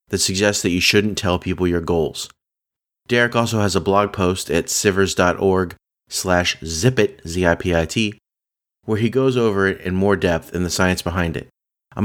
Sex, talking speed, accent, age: male, 170 wpm, American, 30-49